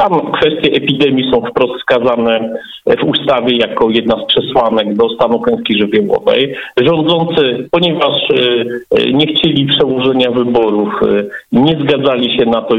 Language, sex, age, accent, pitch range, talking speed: Polish, male, 50-69, native, 120-155 Hz, 125 wpm